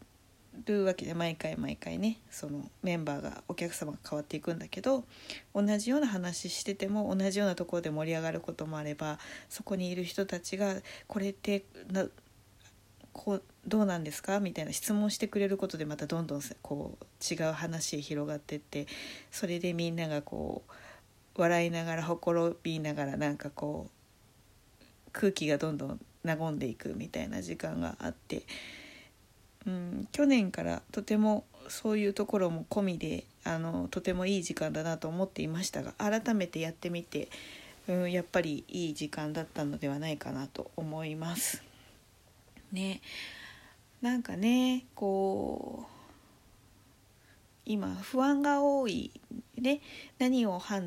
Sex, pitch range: female, 150-205 Hz